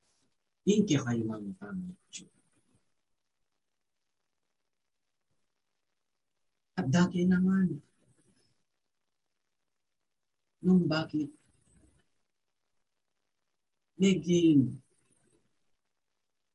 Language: English